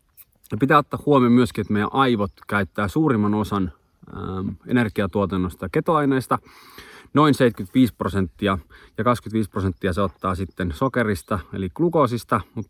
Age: 30-49